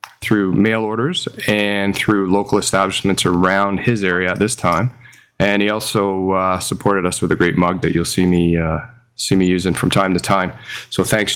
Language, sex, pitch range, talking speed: English, male, 90-115 Hz, 195 wpm